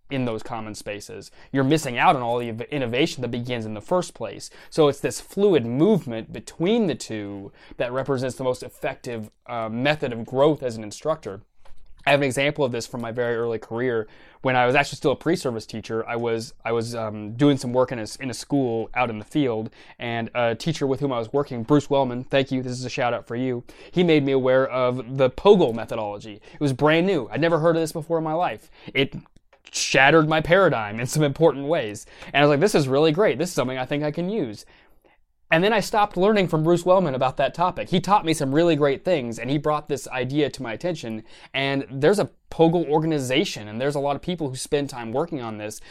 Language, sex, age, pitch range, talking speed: English, male, 20-39, 120-155 Hz, 235 wpm